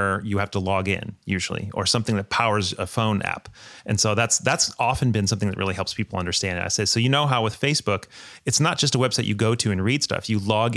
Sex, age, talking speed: male, 30-49, 260 wpm